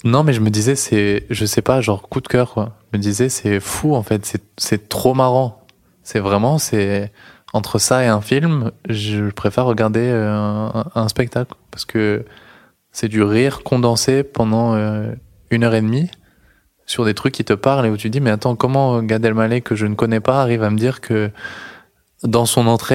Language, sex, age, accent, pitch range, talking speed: French, male, 20-39, French, 105-125 Hz, 205 wpm